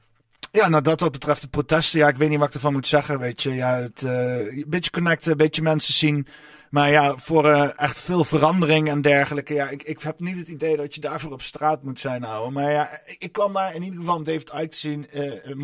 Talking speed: 250 wpm